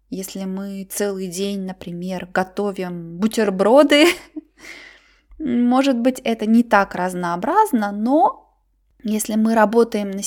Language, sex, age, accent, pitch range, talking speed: Russian, female, 20-39, native, 205-270 Hz, 105 wpm